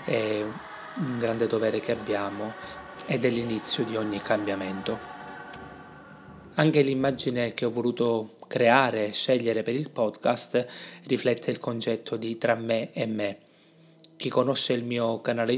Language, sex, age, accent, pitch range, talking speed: Italian, male, 20-39, native, 110-130 Hz, 140 wpm